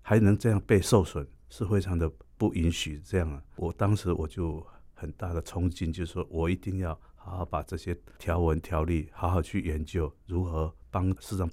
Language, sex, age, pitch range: Chinese, male, 50-69, 80-95 Hz